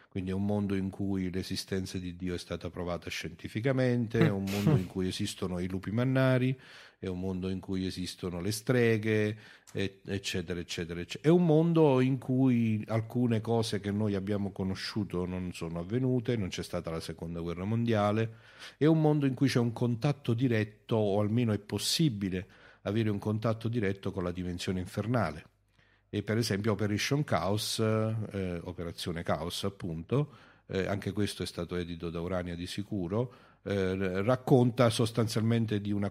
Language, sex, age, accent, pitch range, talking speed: Italian, male, 50-69, native, 90-115 Hz, 165 wpm